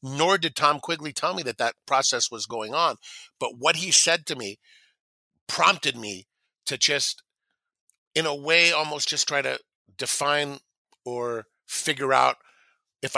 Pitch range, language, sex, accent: 120-155 Hz, English, male, American